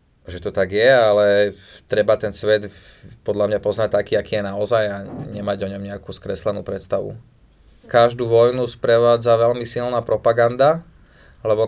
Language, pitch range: Slovak, 100-115 Hz